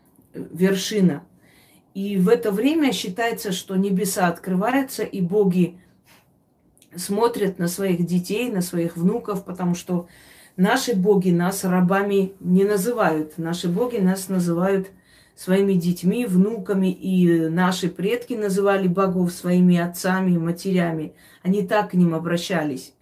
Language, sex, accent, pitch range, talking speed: Russian, female, native, 180-220 Hz, 125 wpm